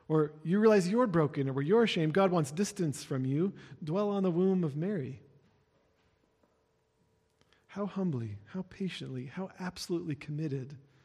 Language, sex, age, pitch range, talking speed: English, male, 40-59, 135-175 Hz, 145 wpm